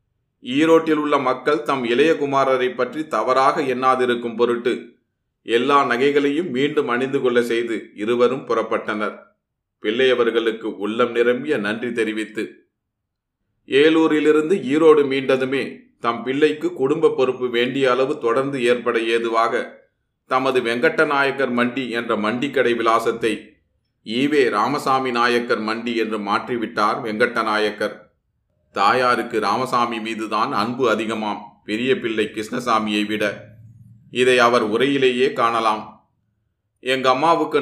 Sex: male